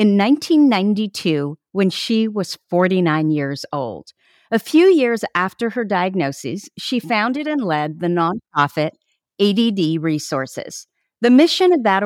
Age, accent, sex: 50-69, American, female